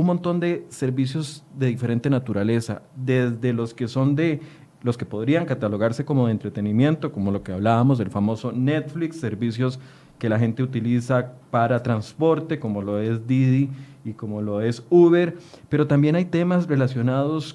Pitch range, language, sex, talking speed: 120-150 Hz, Spanish, male, 160 wpm